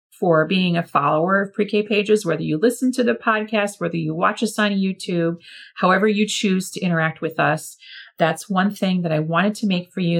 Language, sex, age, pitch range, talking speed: English, female, 30-49, 185-235 Hz, 210 wpm